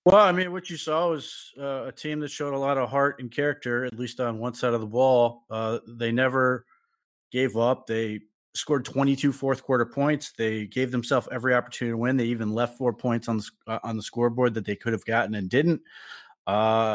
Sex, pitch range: male, 115-135 Hz